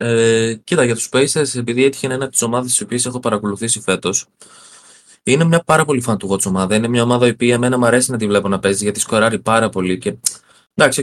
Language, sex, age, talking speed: Greek, male, 20-39, 220 wpm